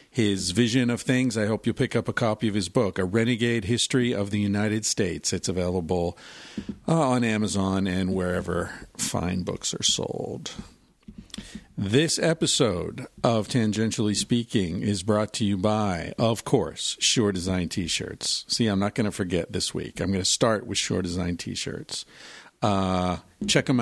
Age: 50-69